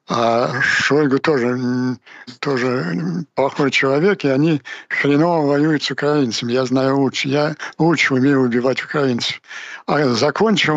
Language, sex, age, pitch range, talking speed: Ukrainian, male, 60-79, 130-150 Hz, 125 wpm